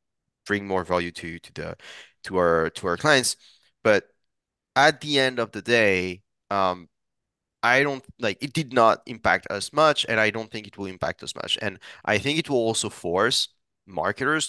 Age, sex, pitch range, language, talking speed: 30-49, male, 100-130 Hz, English, 185 wpm